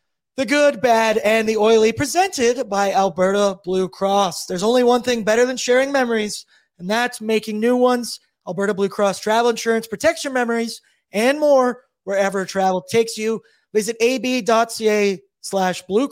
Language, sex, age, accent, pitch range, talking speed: English, male, 20-39, American, 200-245 Hz, 155 wpm